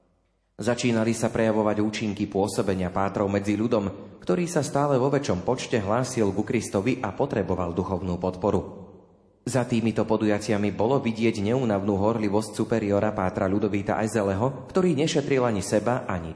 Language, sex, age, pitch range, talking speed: Slovak, male, 30-49, 100-130 Hz, 135 wpm